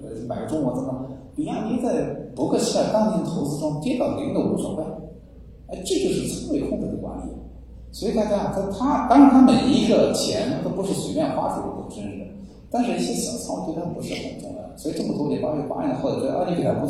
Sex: male